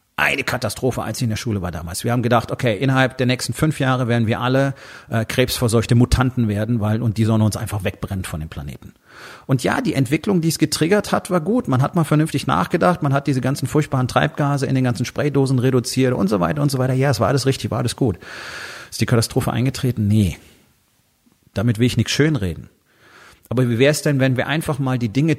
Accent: German